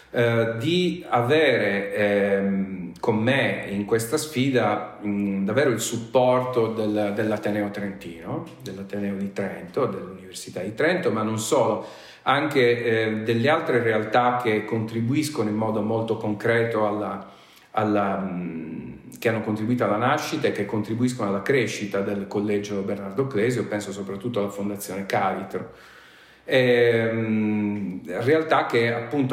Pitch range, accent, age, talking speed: 100-115 Hz, native, 40-59, 115 wpm